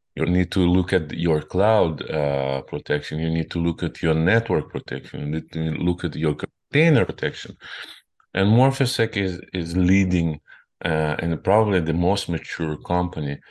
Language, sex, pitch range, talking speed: English, male, 80-100 Hz, 165 wpm